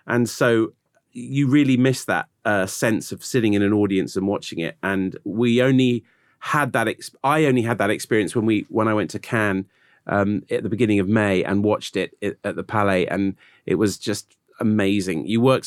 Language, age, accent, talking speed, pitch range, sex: English, 30-49, British, 200 wpm, 105-130 Hz, male